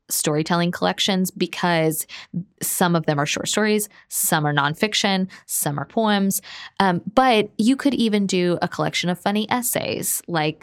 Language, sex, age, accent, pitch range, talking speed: English, female, 20-39, American, 155-195 Hz, 150 wpm